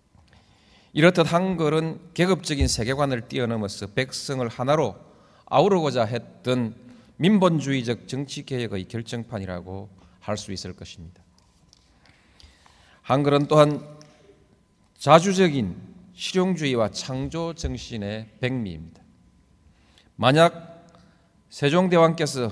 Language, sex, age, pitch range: Korean, male, 40-59, 100-150 Hz